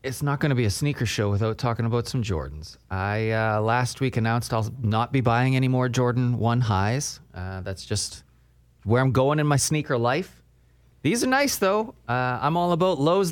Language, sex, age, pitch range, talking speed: English, male, 30-49, 105-150 Hz, 205 wpm